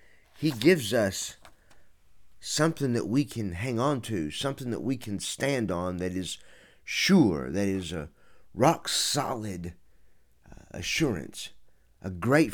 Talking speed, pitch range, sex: 125 wpm, 100-145 Hz, male